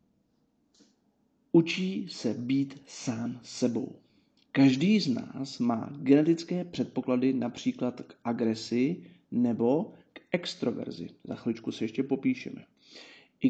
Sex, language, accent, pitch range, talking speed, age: male, Czech, native, 125-200 Hz, 100 wpm, 40-59